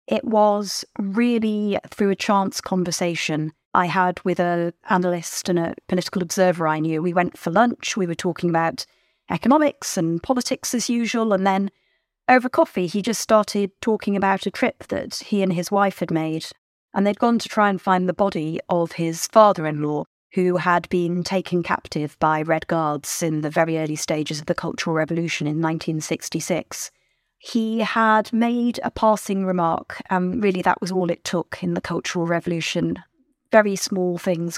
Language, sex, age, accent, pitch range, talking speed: English, female, 40-59, British, 170-200 Hz, 175 wpm